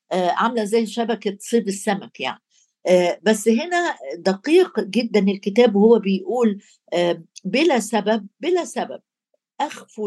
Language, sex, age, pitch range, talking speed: Arabic, female, 60-79, 185-245 Hz, 125 wpm